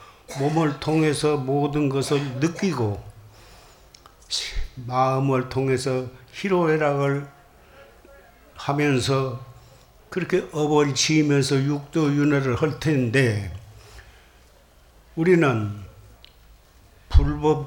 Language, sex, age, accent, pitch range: Korean, male, 60-79, native, 115-160 Hz